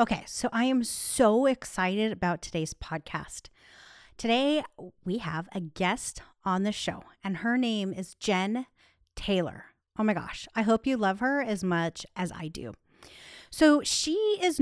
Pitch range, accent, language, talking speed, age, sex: 190-260 Hz, American, English, 160 wpm, 30-49, female